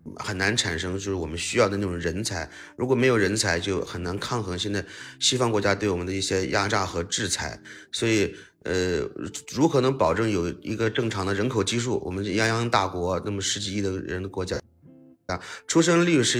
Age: 30-49